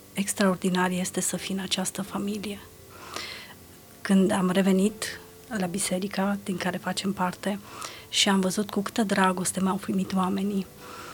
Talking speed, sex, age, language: 135 wpm, female, 30-49, Romanian